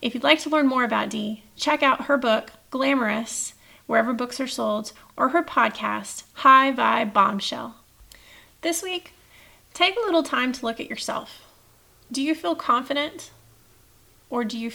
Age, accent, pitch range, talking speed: 30-49, American, 220-290 Hz, 165 wpm